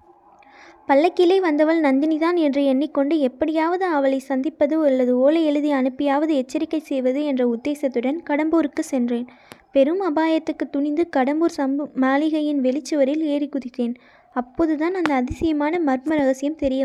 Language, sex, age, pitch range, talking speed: Tamil, female, 20-39, 270-325 Hz, 120 wpm